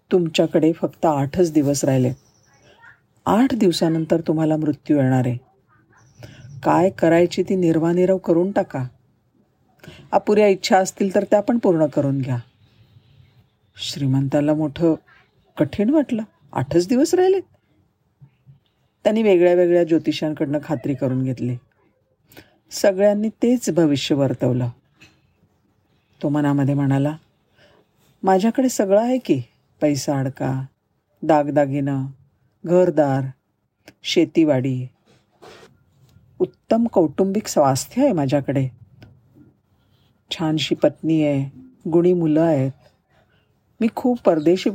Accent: native